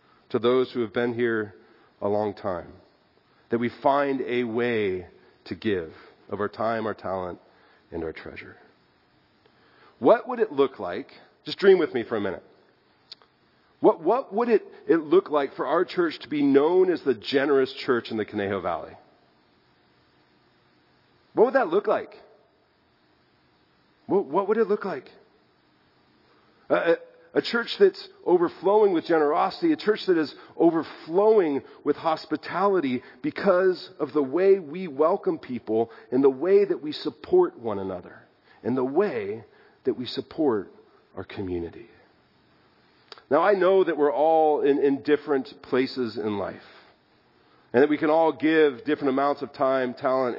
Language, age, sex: English, 40-59, male